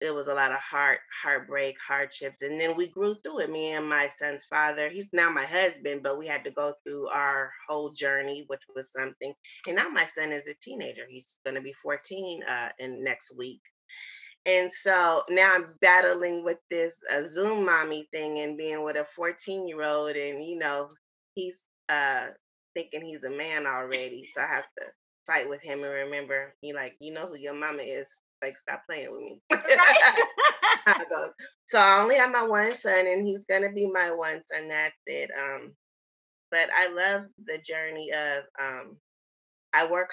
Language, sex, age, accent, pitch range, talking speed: English, female, 20-39, American, 140-180 Hz, 190 wpm